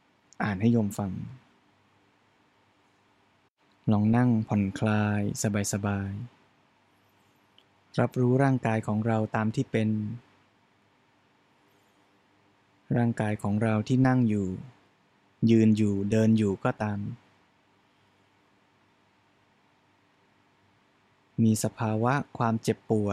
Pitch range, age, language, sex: 100-115 Hz, 20-39, Thai, male